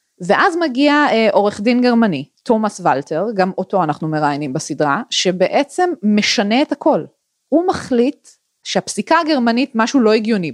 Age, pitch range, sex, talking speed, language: 20-39, 175-255 Hz, female, 135 wpm, Hebrew